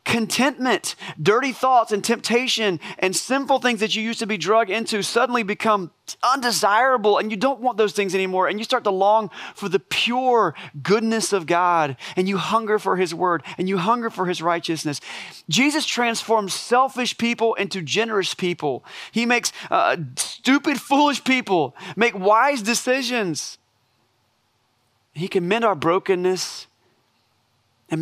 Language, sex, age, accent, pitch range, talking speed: English, male, 30-49, American, 150-225 Hz, 150 wpm